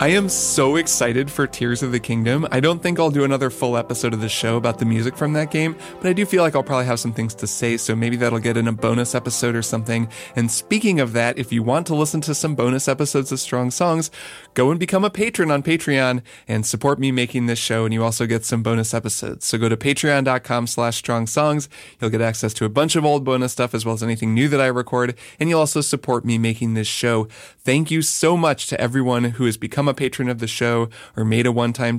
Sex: male